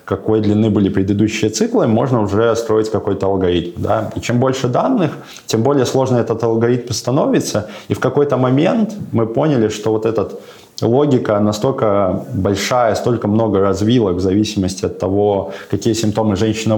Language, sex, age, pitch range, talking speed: Russian, male, 20-39, 100-115 Hz, 150 wpm